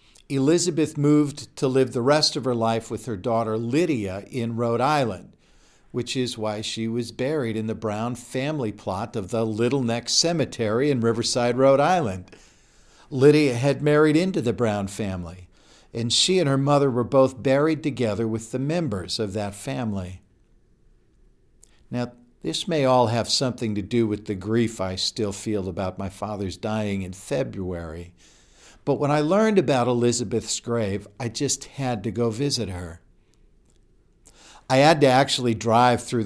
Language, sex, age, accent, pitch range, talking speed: English, male, 50-69, American, 110-140 Hz, 160 wpm